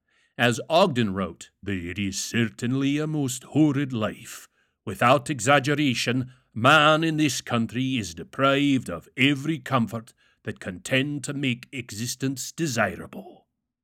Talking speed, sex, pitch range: 120 wpm, male, 120-160 Hz